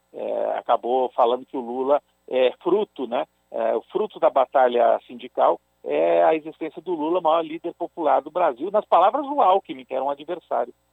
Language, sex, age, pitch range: Portuguese, male, 50-69, 130-205 Hz